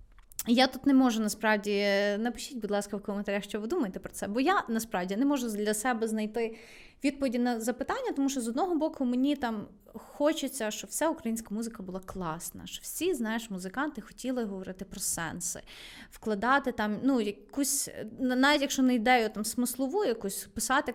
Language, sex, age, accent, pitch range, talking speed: Ukrainian, female, 20-39, native, 215-265 Hz, 170 wpm